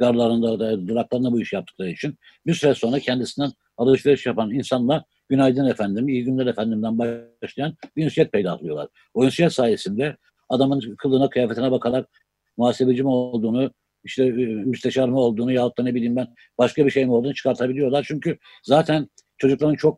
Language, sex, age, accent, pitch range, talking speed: Turkish, male, 60-79, native, 125-150 Hz, 155 wpm